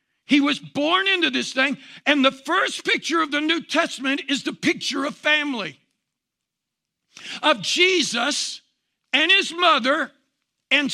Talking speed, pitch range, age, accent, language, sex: 135 wpm, 230-300 Hz, 60-79, American, English, male